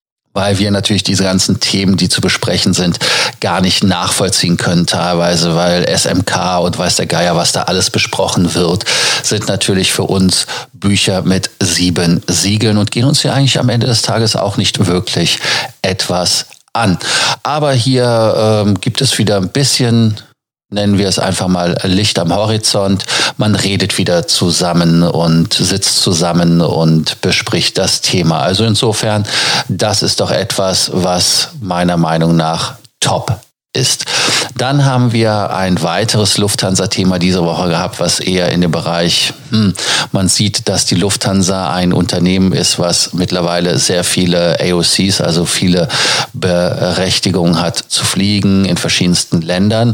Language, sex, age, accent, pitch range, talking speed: German, male, 40-59, German, 90-105 Hz, 150 wpm